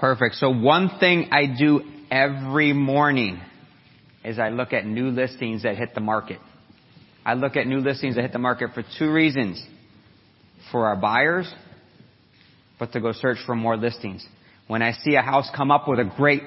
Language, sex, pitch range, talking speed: English, male, 135-180 Hz, 180 wpm